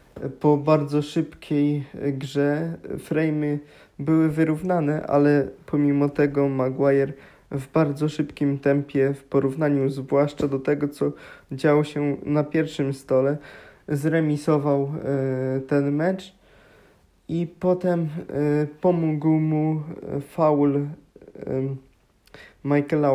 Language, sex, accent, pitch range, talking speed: Polish, male, native, 140-155 Hz, 90 wpm